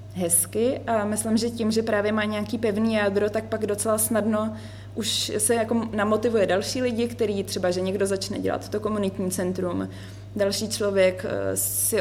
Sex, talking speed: female, 165 wpm